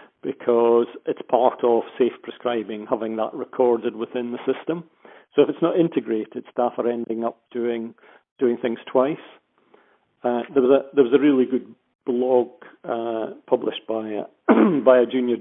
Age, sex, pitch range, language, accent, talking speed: 40-59, male, 115-130 Hz, English, British, 165 wpm